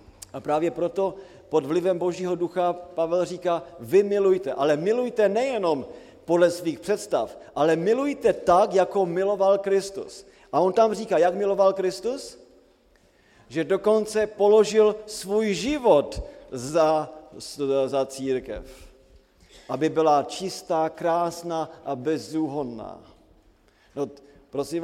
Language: Slovak